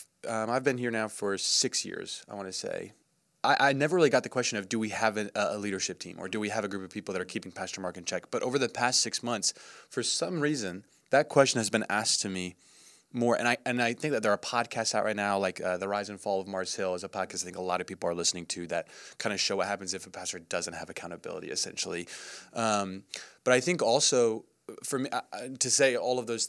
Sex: male